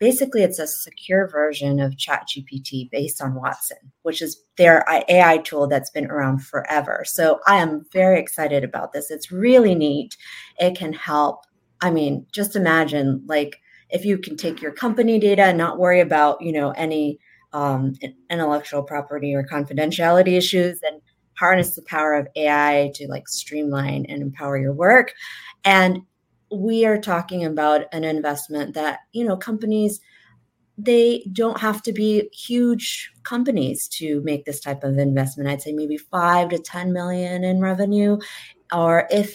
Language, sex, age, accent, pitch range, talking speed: English, female, 30-49, American, 145-190 Hz, 160 wpm